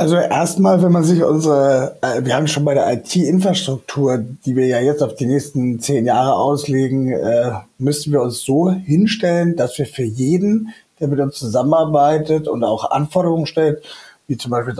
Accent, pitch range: German, 130-155 Hz